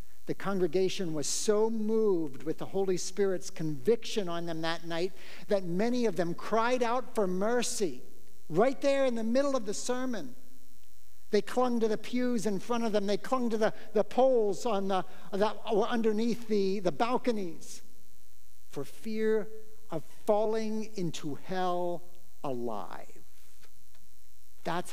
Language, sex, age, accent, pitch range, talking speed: English, male, 60-79, American, 130-220 Hz, 145 wpm